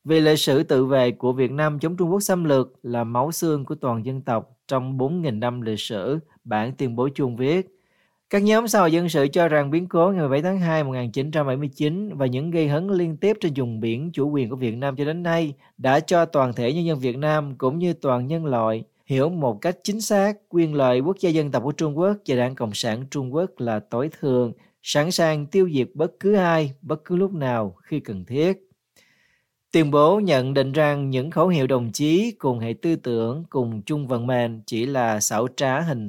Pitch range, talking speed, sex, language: 125-165 Hz, 225 wpm, male, Vietnamese